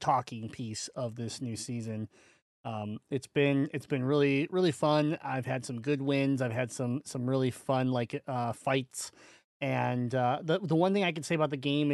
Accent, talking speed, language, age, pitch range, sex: American, 200 wpm, English, 30-49, 115-140 Hz, male